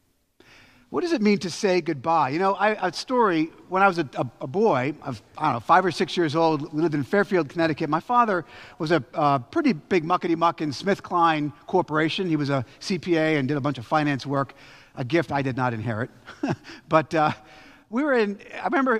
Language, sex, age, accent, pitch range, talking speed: English, male, 50-69, American, 155-205 Hz, 215 wpm